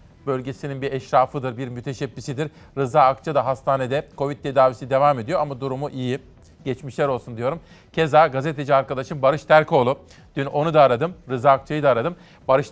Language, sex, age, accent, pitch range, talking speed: Turkish, male, 40-59, native, 135-170 Hz, 155 wpm